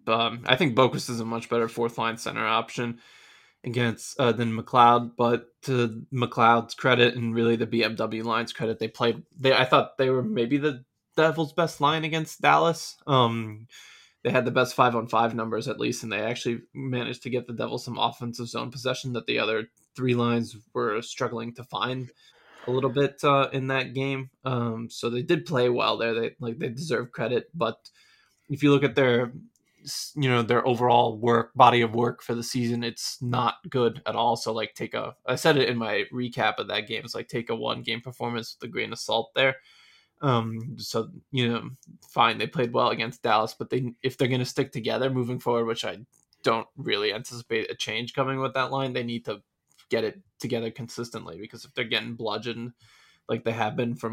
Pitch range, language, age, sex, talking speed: 115-130 Hz, English, 20-39, male, 205 wpm